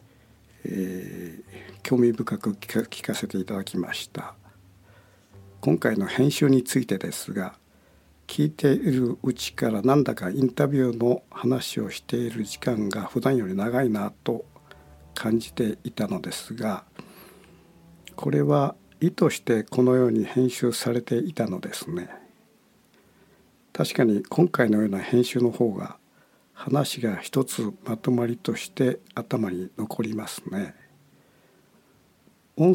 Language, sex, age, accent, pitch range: Japanese, male, 60-79, native, 105-130 Hz